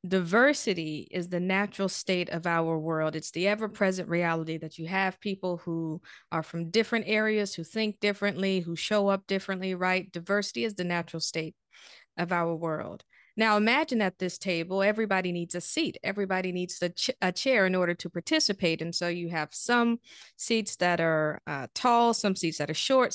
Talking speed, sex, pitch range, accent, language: 185 wpm, female, 175-205 Hz, American, English